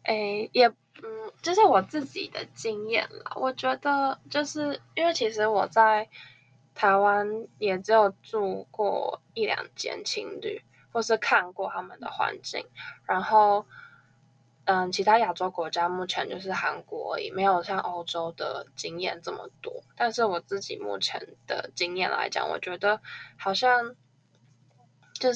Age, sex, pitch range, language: 10-29, female, 180-260 Hz, Chinese